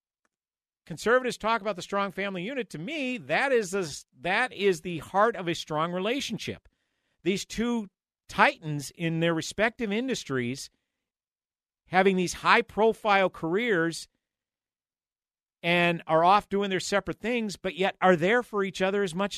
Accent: American